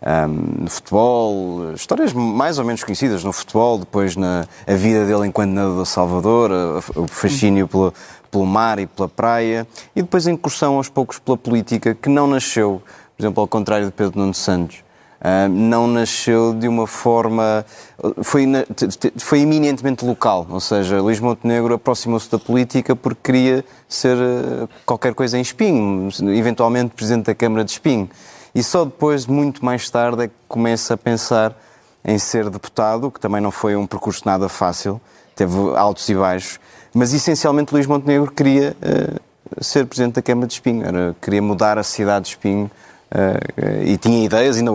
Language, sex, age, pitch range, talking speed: Portuguese, male, 20-39, 100-125 Hz, 170 wpm